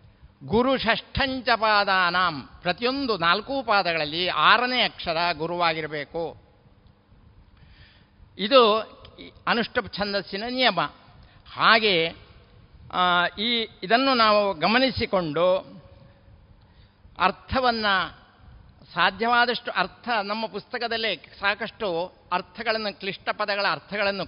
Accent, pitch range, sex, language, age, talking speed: native, 160-225 Hz, male, Kannada, 60-79, 65 wpm